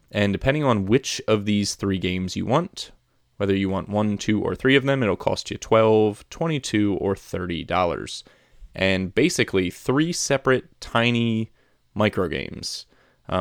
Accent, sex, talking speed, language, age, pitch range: American, male, 145 wpm, English, 30-49, 100-120 Hz